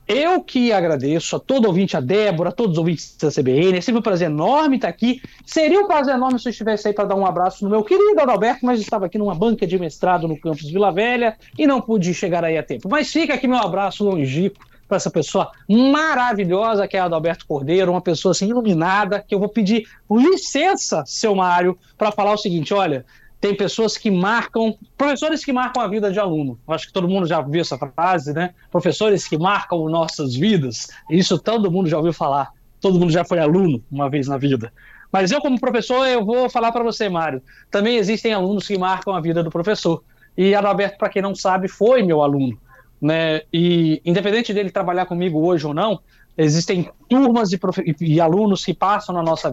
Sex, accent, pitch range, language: male, Brazilian, 165-220 Hz, Portuguese